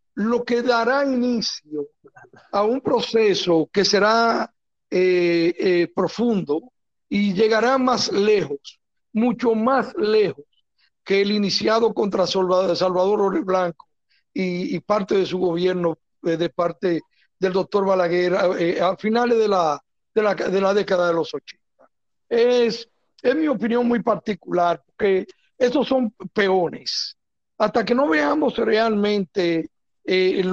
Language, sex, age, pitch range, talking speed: Spanish, male, 60-79, 185-240 Hz, 130 wpm